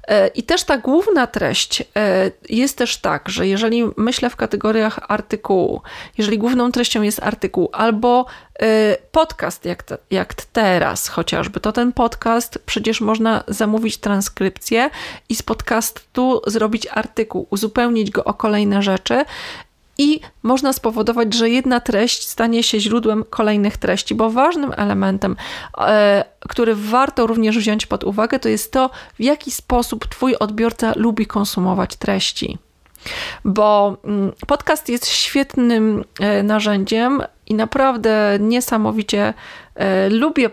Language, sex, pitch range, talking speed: Polish, female, 210-255 Hz, 120 wpm